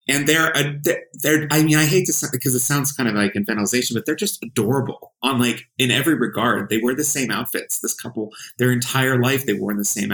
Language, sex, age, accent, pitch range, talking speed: English, male, 30-49, American, 105-135 Hz, 235 wpm